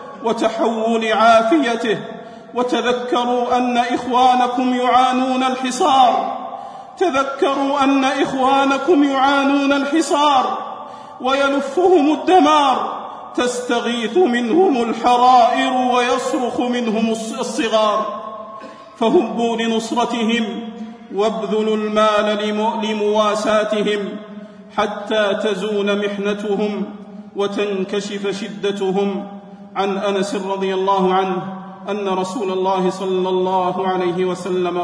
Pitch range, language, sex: 170-240 Hz, Arabic, male